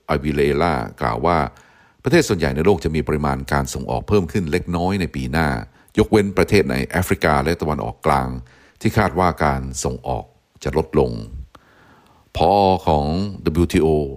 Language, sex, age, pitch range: Thai, male, 60-79, 70-85 Hz